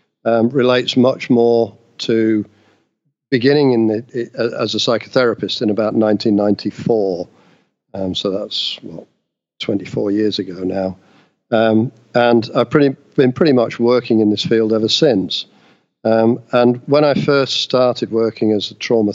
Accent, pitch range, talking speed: British, 105-125 Hz, 145 wpm